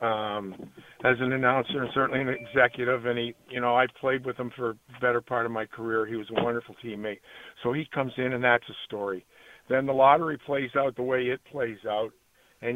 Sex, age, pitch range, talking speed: male, 50-69, 120-140 Hz, 220 wpm